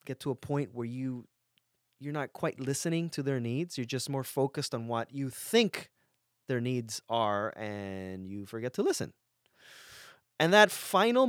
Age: 20-39